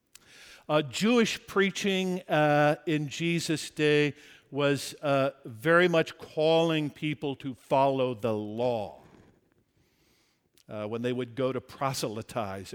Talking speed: 115 wpm